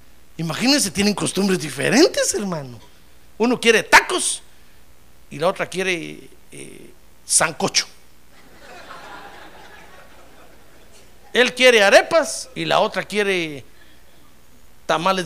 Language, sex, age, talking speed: Spanish, male, 50-69, 85 wpm